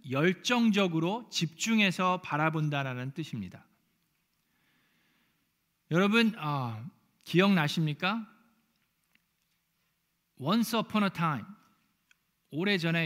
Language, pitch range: Korean, 160-220 Hz